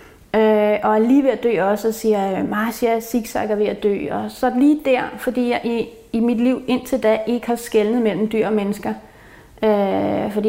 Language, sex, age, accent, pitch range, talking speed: Danish, female, 30-49, native, 210-245 Hz, 205 wpm